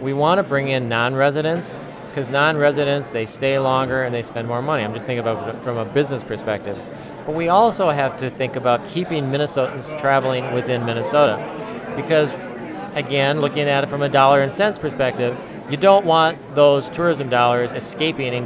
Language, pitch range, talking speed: English, 125-155 Hz, 180 wpm